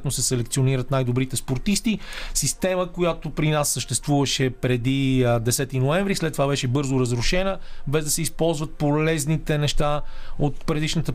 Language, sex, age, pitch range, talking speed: Bulgarian, male, 40-59, 135-165 Hz, 135 wpm